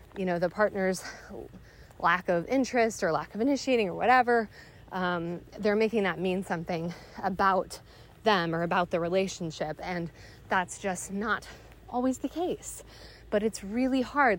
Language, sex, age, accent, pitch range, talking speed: English, female, 20-39, American, 185-245 Hz, 150 wpm